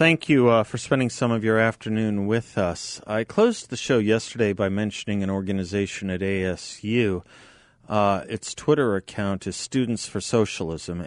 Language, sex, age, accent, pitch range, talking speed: English, male, 40-59, American, 95-120 Hz, 165 wpm